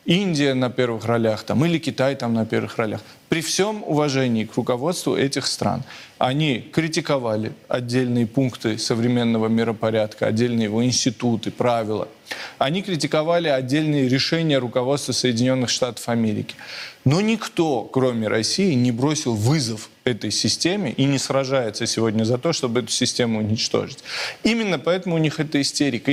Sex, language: male, Russian